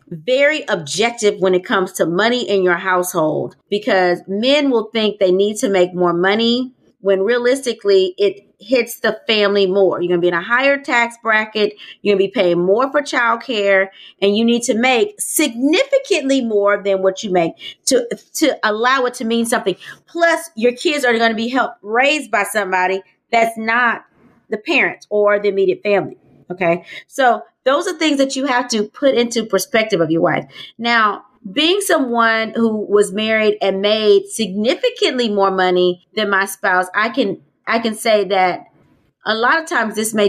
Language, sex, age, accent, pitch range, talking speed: English, female, 30-49, American, 195-260 Hz, 180 wpm